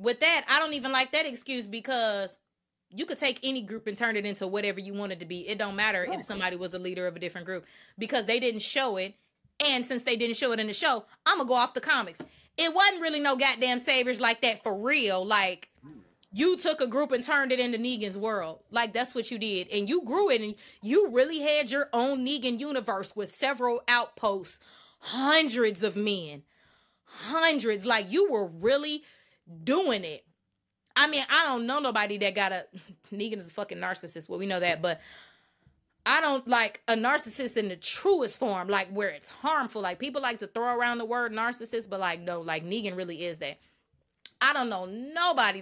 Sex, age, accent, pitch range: female, 20-39, American, 195-275 Hz